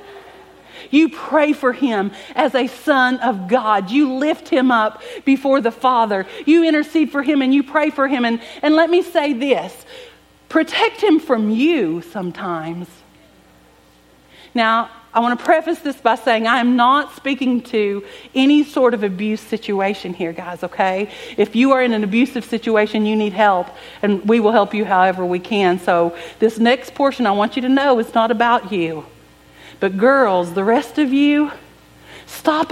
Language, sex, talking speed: English, female, 175 wpm